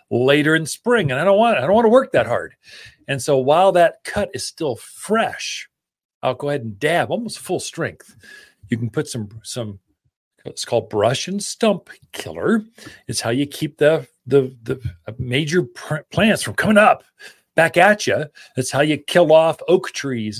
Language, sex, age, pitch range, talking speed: English, male, 40-59, 125-180 Hz, 190 wpm